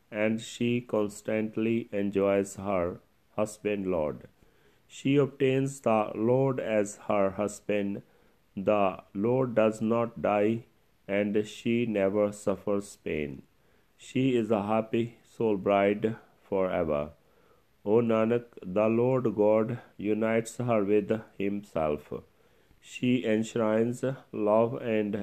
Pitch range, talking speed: 100-115 Hz, 105 wpm